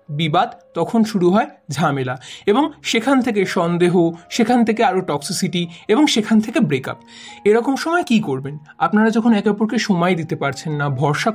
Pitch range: 170-240 Hz